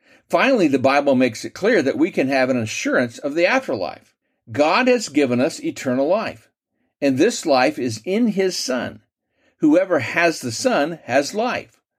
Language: English